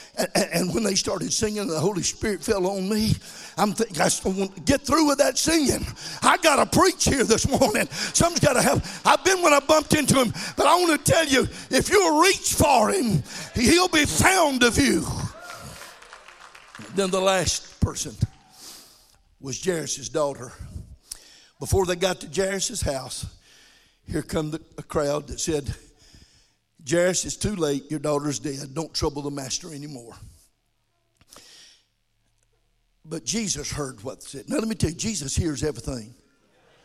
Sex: male